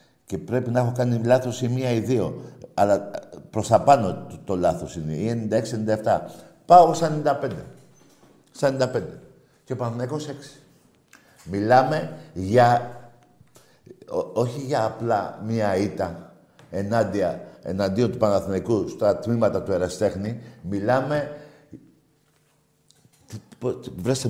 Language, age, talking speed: Greek, 60-79, 115 wpm